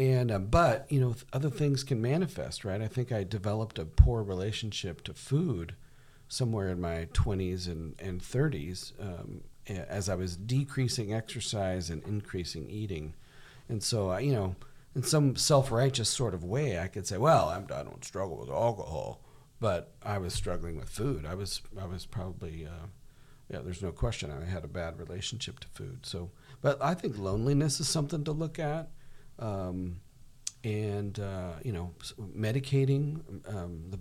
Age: 50-69